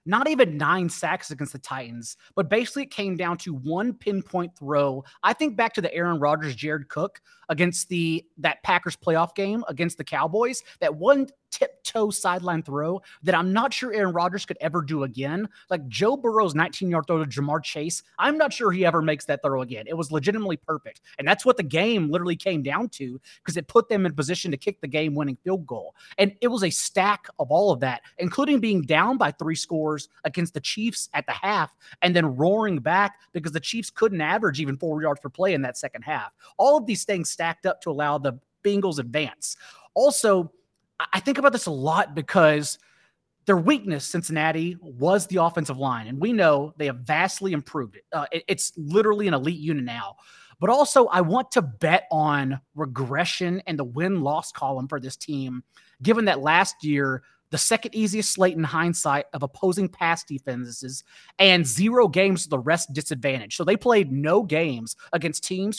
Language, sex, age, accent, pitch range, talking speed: English, male, 30-49, American, 150-200 Hz, 200 wpm